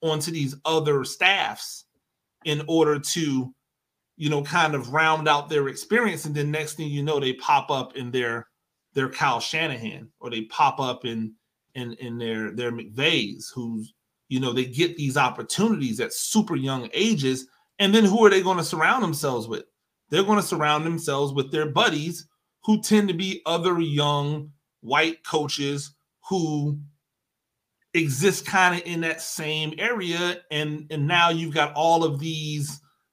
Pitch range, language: 140-165 Hz, English